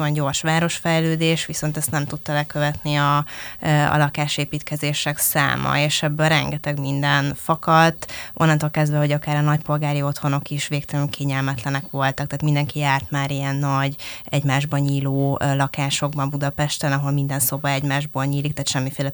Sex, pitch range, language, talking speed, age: female, 140-150 Hz, Hungarian, 140 wpm, 20-39